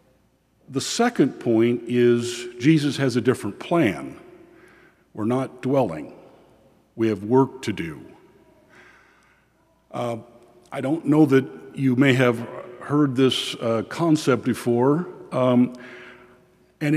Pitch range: 120-145 Hz